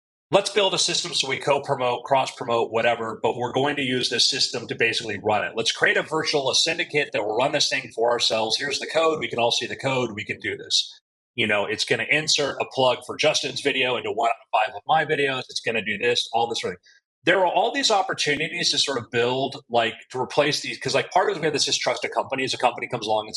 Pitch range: 125-165 Hz